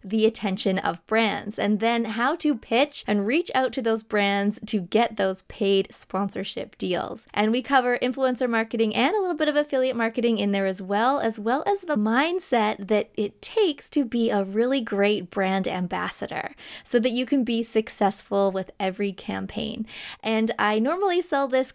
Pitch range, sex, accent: 205-255 Hz, female, American